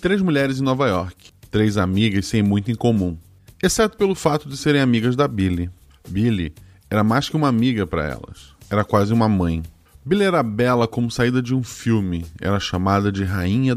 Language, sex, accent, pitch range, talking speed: Portuguese, male, Brazilian, 95-130 Hz, 190 wpm